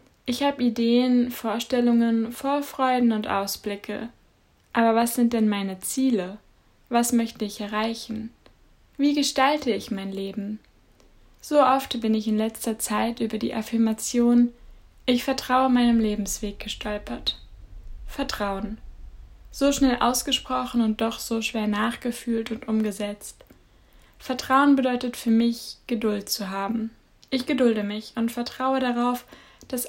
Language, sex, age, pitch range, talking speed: German, female, 10-29, 220-255 Hz, 125 wpm